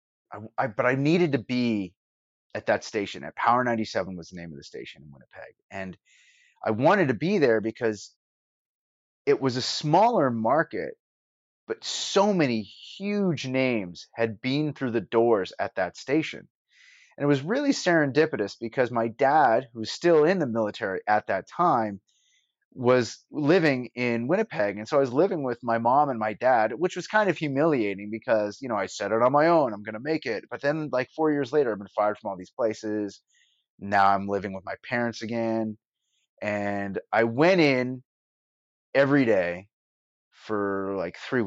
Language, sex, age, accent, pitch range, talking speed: English, male, 30-49, American, 100-145 Hz, 180 wpm